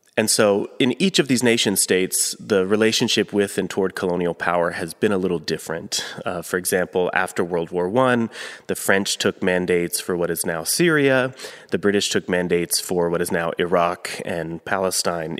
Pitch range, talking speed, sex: 90-115 Hz, 185 wpm, male